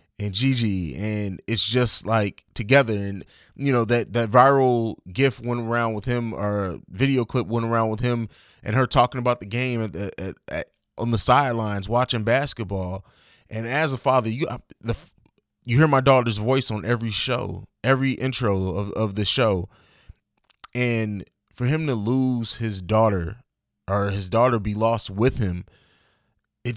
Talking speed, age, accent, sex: 170 wpm, 20-39, American, male